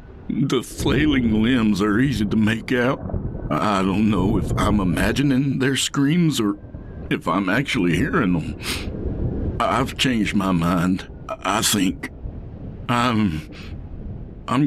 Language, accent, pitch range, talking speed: English, American, 90-110 Hz, 125 wpm